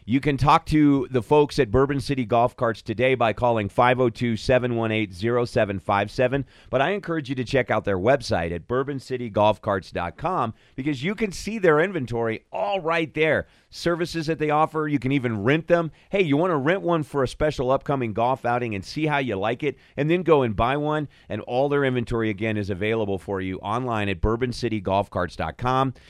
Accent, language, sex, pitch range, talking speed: American, English, male, 100-135 Hz, 185 wpm